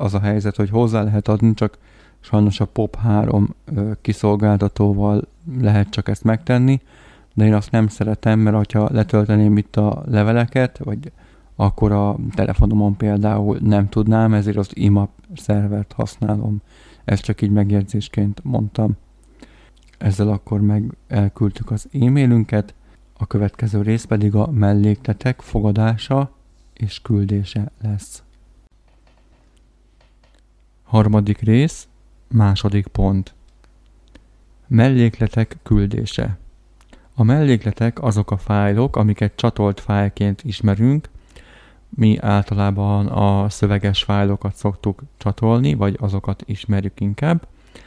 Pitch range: 100-110 Hz